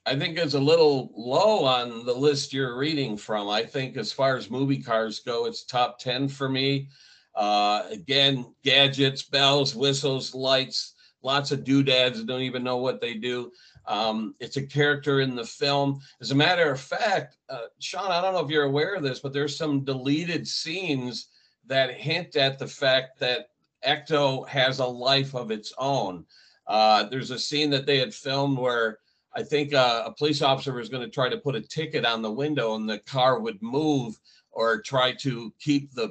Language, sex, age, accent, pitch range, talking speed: English, male, 50-69, American, 125-145 Hz, 190 wpm